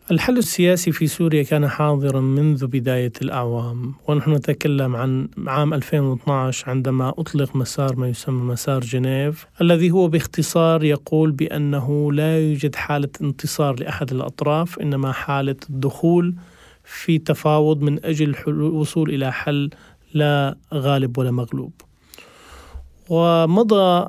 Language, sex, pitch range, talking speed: Arabic, male, 140-170 Hz, 115 wpm